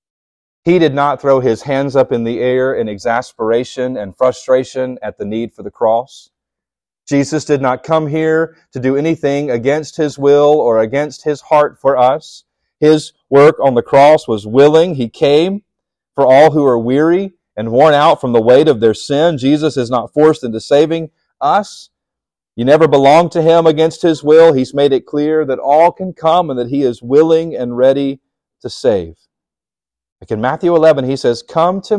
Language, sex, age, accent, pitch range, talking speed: English, male, 40-59, American, 110-155 Hz, 190 wpm